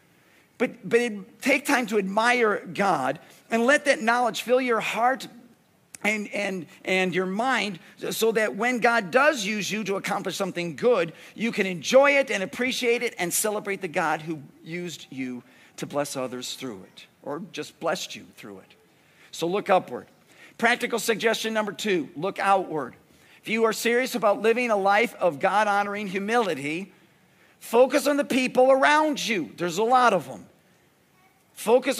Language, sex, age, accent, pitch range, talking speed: English, male, 50-69, American, 170-230 Hz, 165 wpm